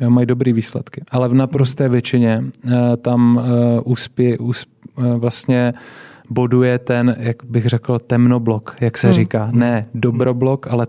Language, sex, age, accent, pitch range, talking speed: Czech, male, 20-39, native, 120-135 Hz, 120 wpm